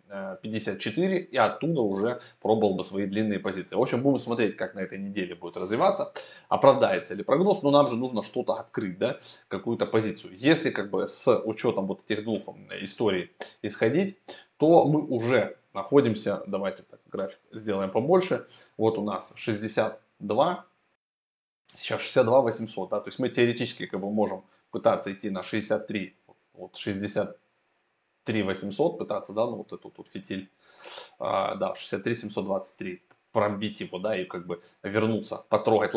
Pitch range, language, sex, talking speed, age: 100-125 Hz, Russian, male, 150 wpm, 20-39